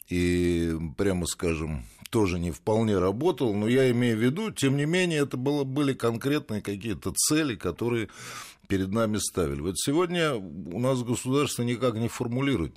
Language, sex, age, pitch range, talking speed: Russian, male, 50-69, 85-120 Hz, 150 wpm